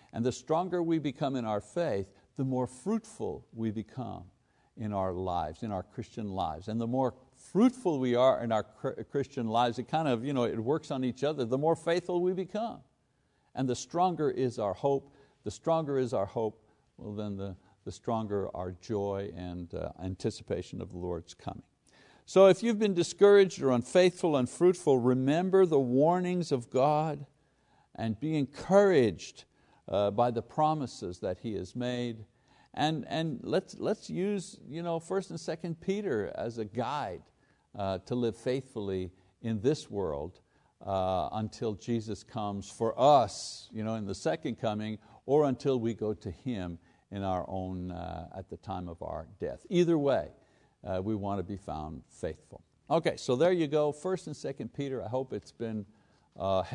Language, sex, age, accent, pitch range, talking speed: English, male, 60-79, American, 105-150 Hz, 175 wpm